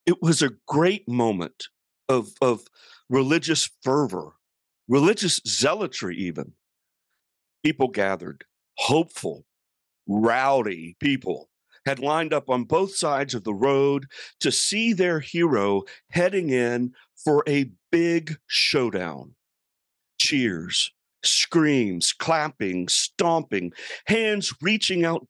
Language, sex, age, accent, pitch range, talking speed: English, male, 50-69, American, 115-170 Hz, 100 wpm